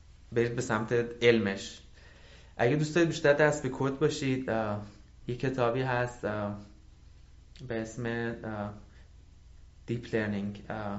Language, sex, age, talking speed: Persian, male, 20-39, 100 wpm